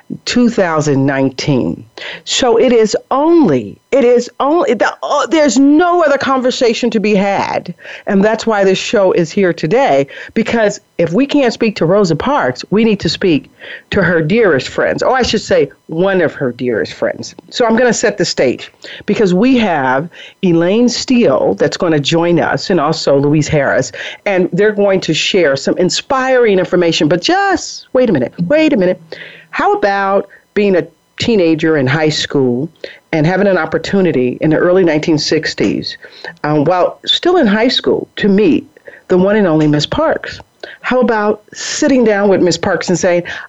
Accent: American